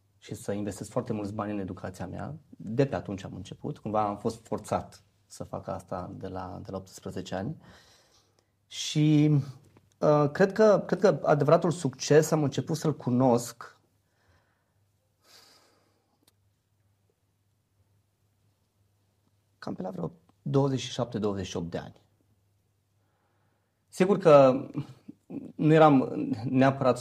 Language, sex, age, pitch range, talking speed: Romanian, male, 30-49, 105-135 Hz, 105 wpm